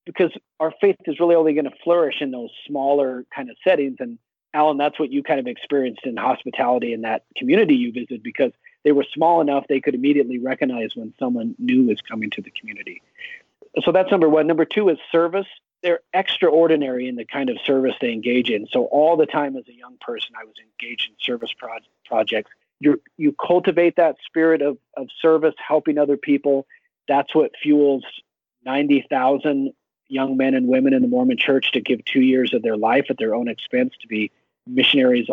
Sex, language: male, English